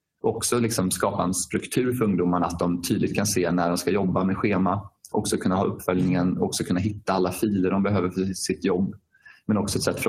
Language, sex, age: Swedish, male, 20-39